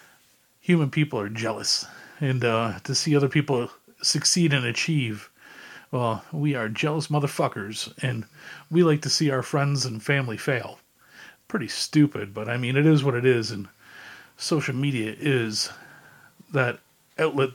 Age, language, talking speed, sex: 40-59, English, 150 wpm, male